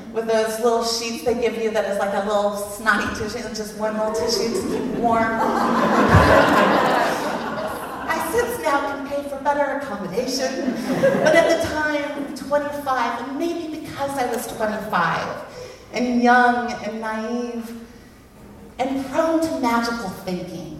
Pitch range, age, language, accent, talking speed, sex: 220-285 Hz, 30-49, English, American, 140 wpm, female